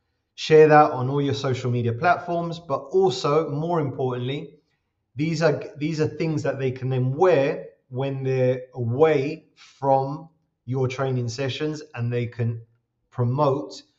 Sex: male